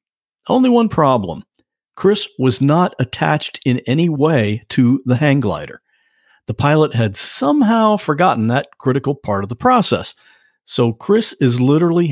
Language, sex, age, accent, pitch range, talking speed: English, male, 50-69, American, 115-165 Hz, 145 wpm